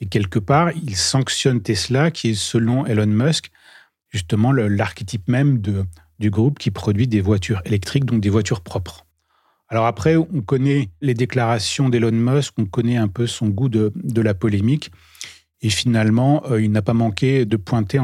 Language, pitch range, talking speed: French, 110-135 Hz, 180 wpm